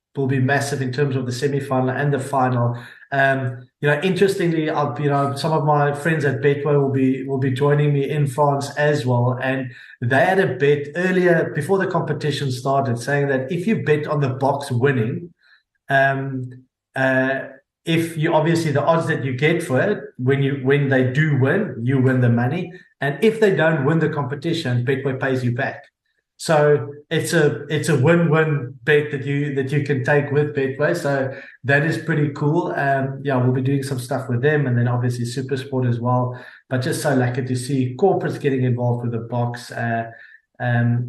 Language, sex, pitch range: English, male, 125-150 Hz